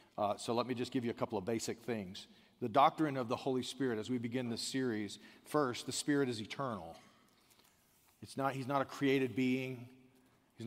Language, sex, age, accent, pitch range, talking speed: English, male, 40-59, American, 120-140 Hz, 200 wpm